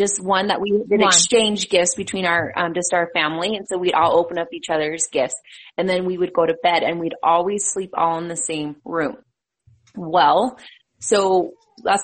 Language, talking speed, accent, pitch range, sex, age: English, 205 wpm, American, 175-215 Hz, female, 20-39